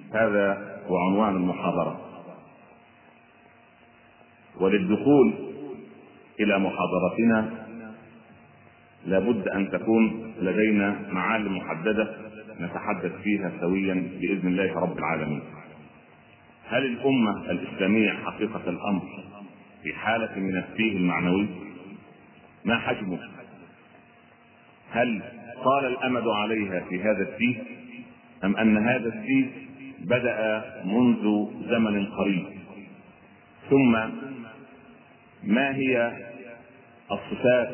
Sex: male